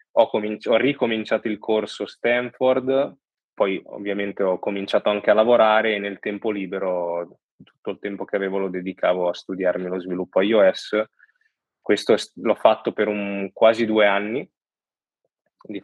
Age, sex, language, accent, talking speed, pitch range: 20-39, male, Italian, native, 140 wpm, 95-110 Hz